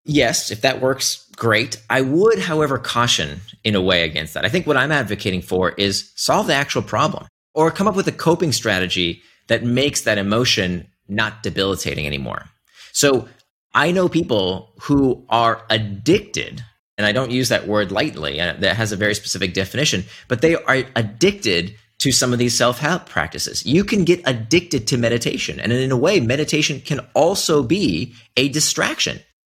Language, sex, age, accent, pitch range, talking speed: English, male, 30-49, American, 100-140 Hz, 175 wpm